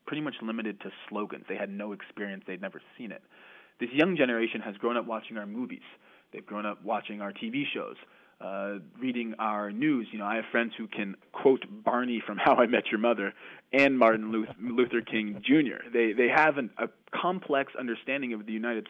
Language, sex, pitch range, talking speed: English, male, 105-135 Hz, 205 wpm